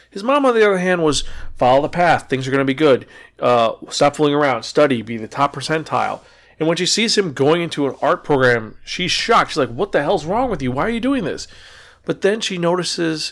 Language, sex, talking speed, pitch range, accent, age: English, male, 245 wpm, 130-160 Hz, American, 40-59